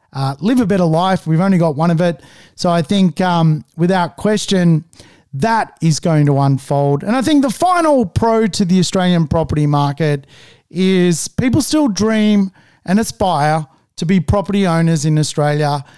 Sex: male